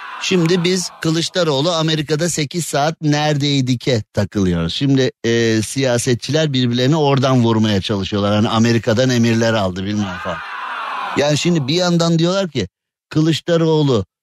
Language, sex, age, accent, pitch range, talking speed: Turkish, male, 50-69, native, 115-155 Hz, 120 wpm